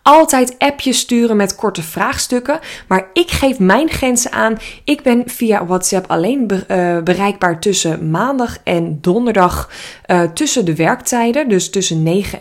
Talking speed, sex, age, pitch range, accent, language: 145 wpm, female, 20-39, 185-235 Hz, Dutch, Dutch